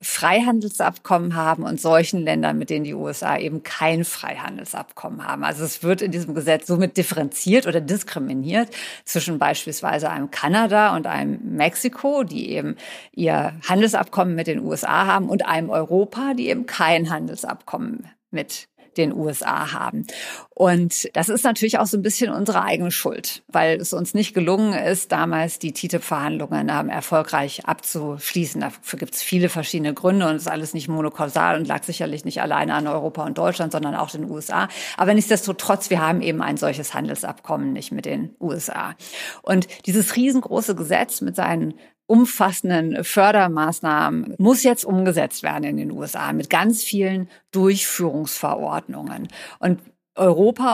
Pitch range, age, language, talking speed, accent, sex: 160-210 Hz, 50-69, German, 155 wpm, German, female